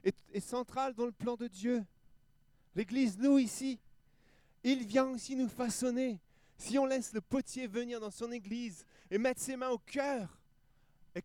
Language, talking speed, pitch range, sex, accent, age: French, 165 wpm, 145-215 Hz, male, French, 30-49